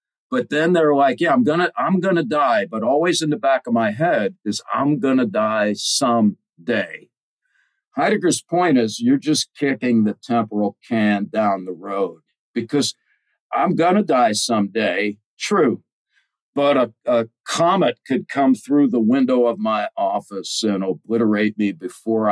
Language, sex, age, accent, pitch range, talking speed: English, male, 50-69, American, 115-145 Hz, 155 wpm